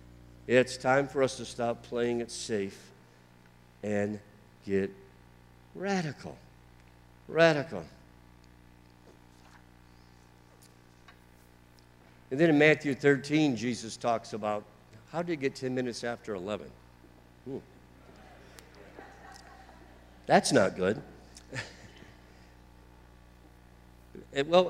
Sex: male